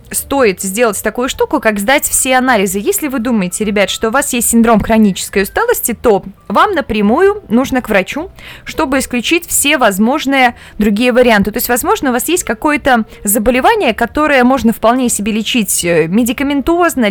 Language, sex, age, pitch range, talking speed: Russian, female, 20-39, 215-275 Hz, 160 wpm